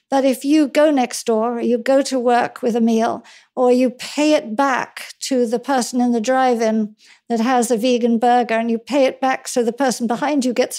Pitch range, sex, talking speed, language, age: 235-265 Hz, female, 230 wpm, English, 60-79